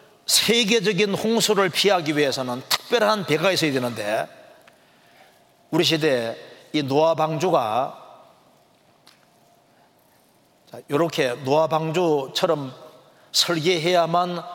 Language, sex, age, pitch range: Korean, male, 40-59, 150-210 Hz